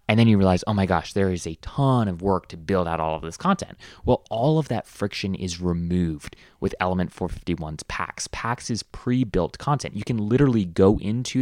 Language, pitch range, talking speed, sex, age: English, 90-120 Hz, 210 wpm, male, 20-39